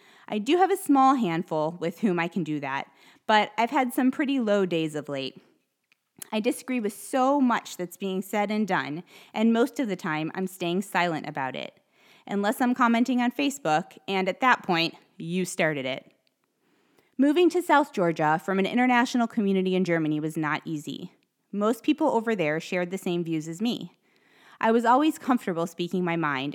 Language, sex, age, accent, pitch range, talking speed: English, female, 20-39, American, 170-245 Hz, 190 wpm